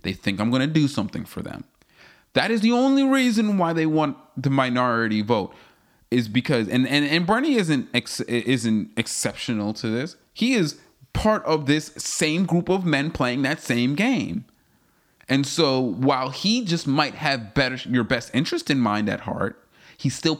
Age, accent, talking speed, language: 30-49, American, 180 wpm, English